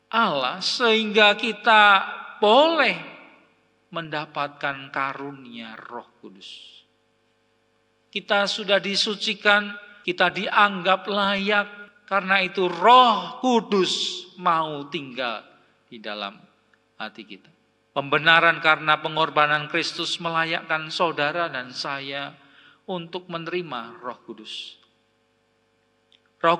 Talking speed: 85 wpm